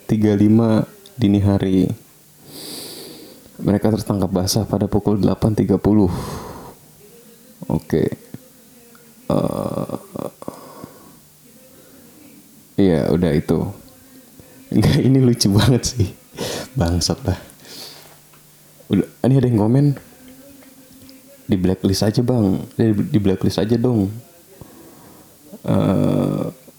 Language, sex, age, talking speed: Indonesian, male, 30-49, 75 wpm